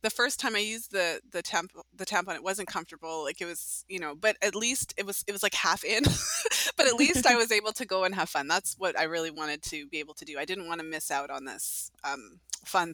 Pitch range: 165-205 Hz